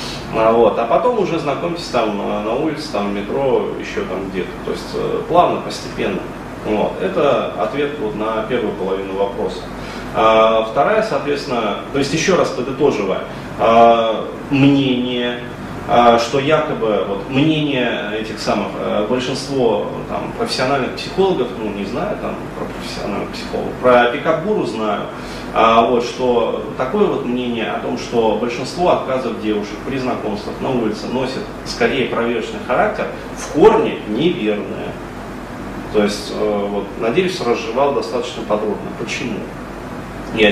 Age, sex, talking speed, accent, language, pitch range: 30-49, male, 125 wpm, native, Russian, 105-135 Hz